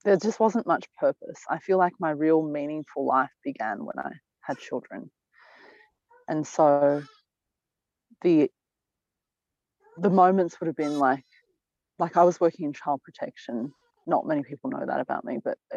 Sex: female